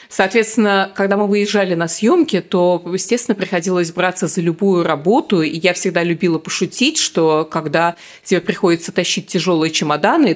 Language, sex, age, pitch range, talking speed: Russian, female, 30-49, 170-215 Hz, 145 wpm